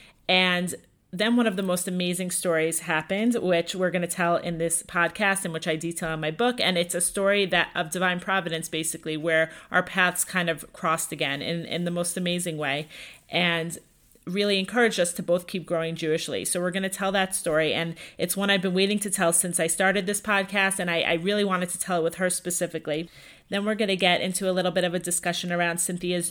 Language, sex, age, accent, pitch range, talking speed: English, female, 30-49, American, 170-190 Hz, 230 wpm